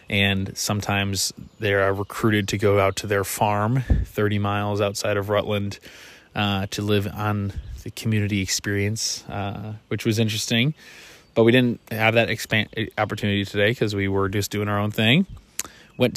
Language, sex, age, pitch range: English, male, 20-39, 100-115 Hz